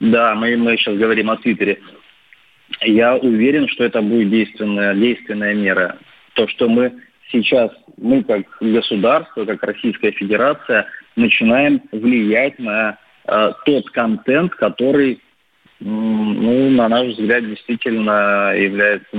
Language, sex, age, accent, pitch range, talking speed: Russian, male, 20-39, native, 105-125 Hz, 120 wpm